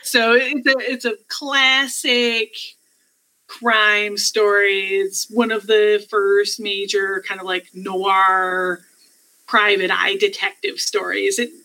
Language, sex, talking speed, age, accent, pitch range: English, female, 120 wpm, 30-49, American, 190-280 Hz